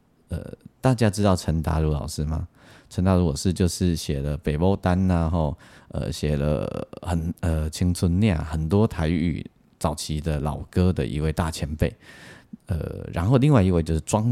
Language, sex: Chinese, male